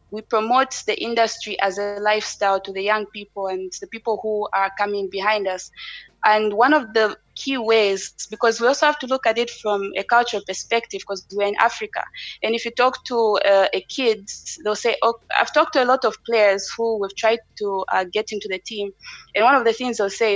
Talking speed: 220 wpm